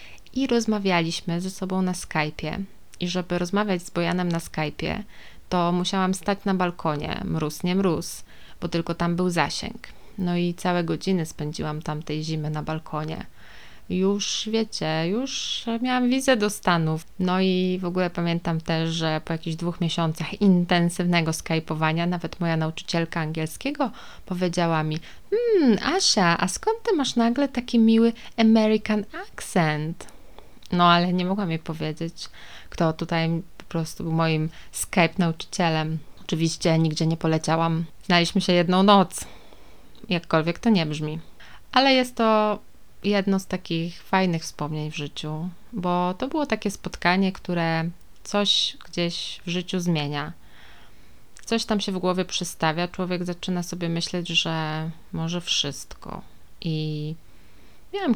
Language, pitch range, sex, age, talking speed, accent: Polish, 160-195 Hz, female, 20-39, 140 wpm, native